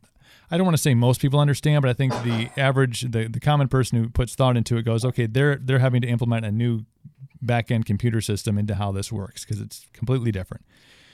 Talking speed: 225 wpm